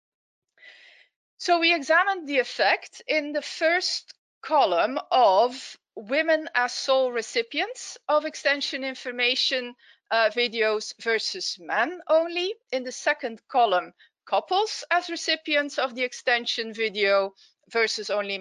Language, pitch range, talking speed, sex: English, 215-300 Hz, 115 wpm, female